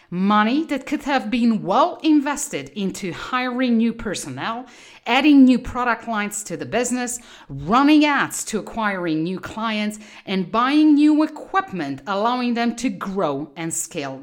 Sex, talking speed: female, 145 wpm